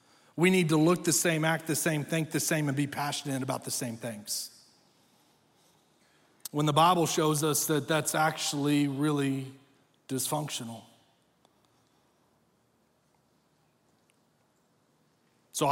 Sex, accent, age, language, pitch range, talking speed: male, American, 40-59, English, 135-165 Hz, 115 wpm